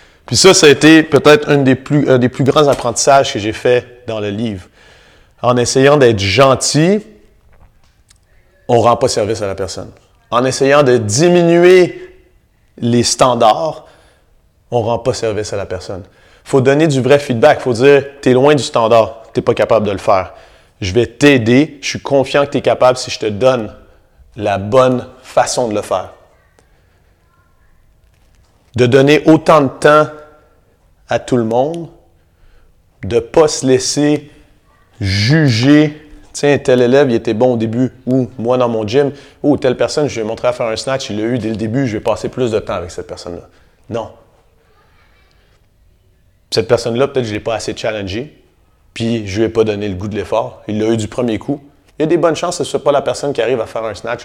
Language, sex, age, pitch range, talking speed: French, male, 30-49, 105-140 Hz, 200 wpm